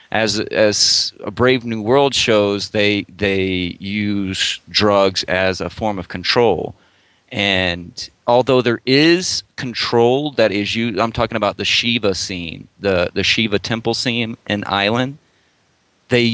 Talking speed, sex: 140 wpm, male